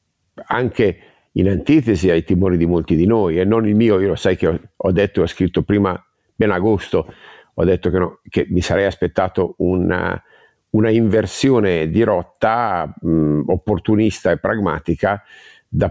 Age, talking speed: 50-69, 160 wpm